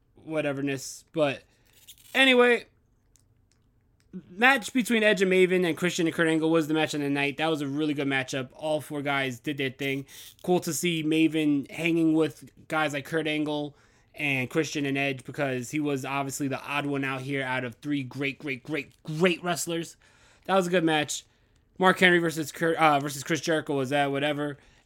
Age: 20-39